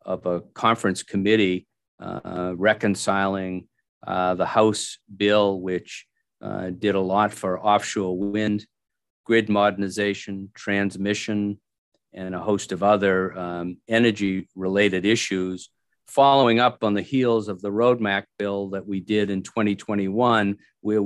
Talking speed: 130 wpm